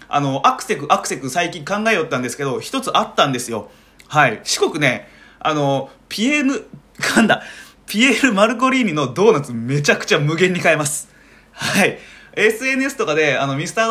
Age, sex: 20-39, male